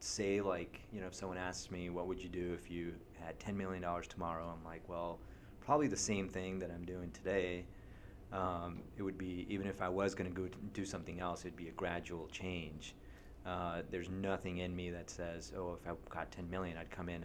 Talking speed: 225 wpm